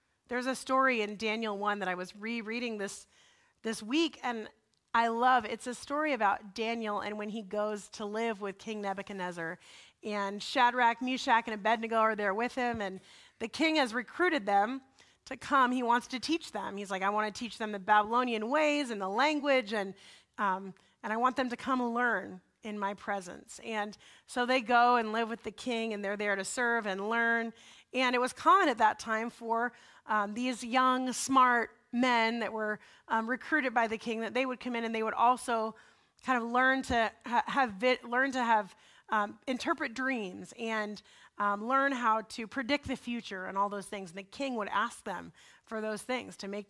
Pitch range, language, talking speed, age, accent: 215-255 Hz, English, 205 wpm, 30-49, American